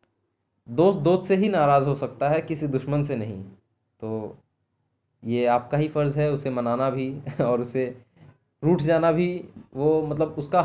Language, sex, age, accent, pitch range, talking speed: Hindi, male, 20-39, native, 120-140 Hz, 165 wpm